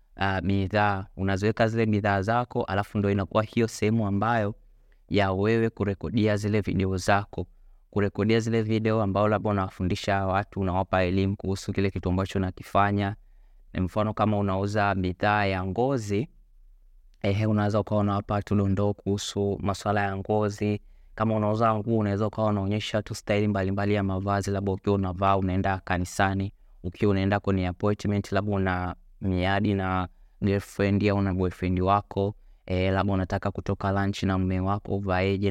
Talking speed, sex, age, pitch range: 140 wpm, male, 20-39, 95-110 Hz